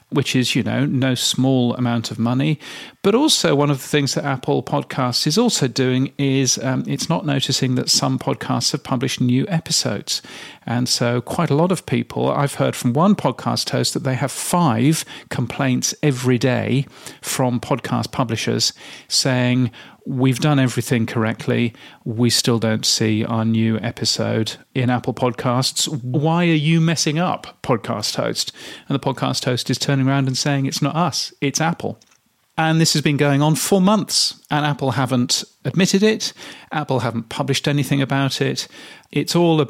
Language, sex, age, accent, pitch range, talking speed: English, male, 40-59, British, 125-150 Hz, 170 wpm